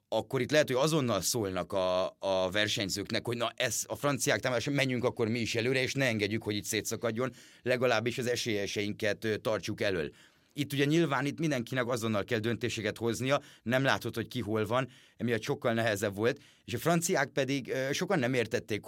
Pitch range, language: 105-135 Hz, Hungarian